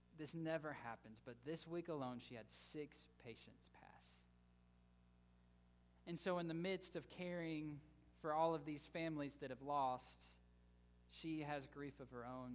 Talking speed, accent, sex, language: 160 wpm, American, male, English